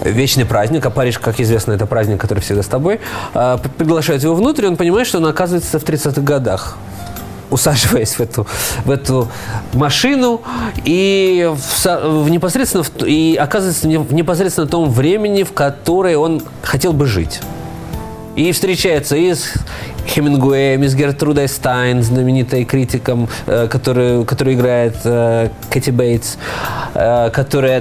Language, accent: Russian, native